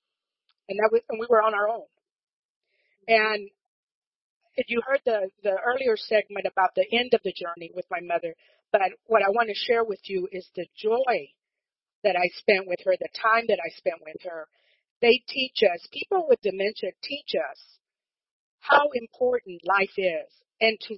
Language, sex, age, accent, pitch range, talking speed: English, female, 40-59, American, 200-285 Hz, 170 wpm